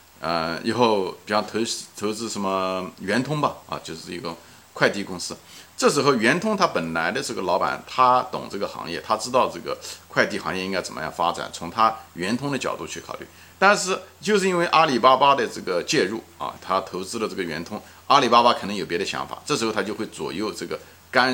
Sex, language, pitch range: male, Chinese, 85-125 Hz